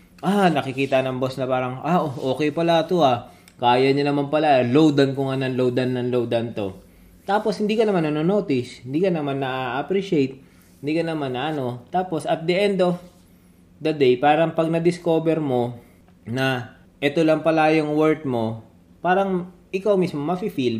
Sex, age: male, 20-39